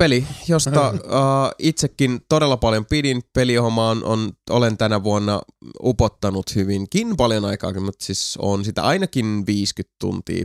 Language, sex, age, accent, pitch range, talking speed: Finnish, male, 20-39, native, 105-135 Hz, 130 wpm